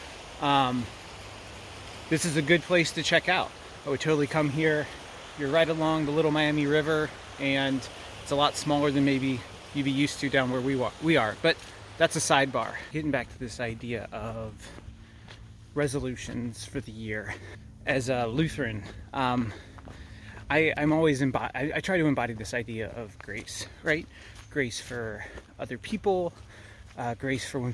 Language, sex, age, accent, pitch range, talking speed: English, male, 30-49, American, 105-145 Hz, 170 wpm